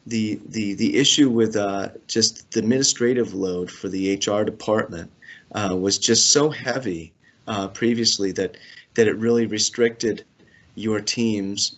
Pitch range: 100-115 Hz